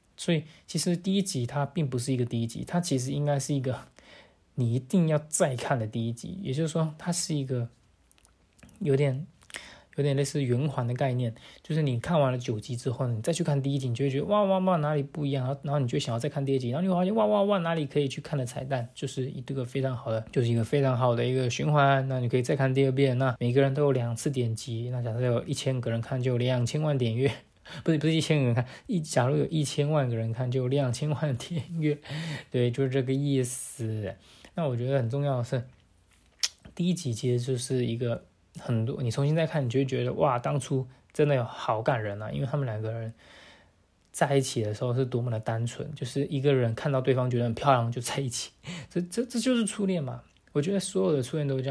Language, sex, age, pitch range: Chinese, male, 20-39, 120-150 Hz